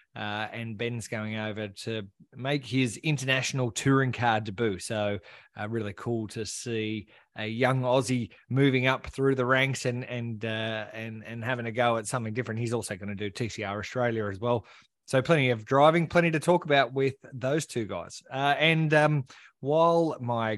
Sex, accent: male, Australian